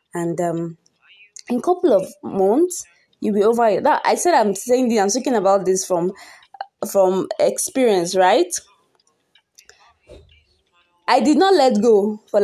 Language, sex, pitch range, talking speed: English, female, 190-270 Hz, 145 wpm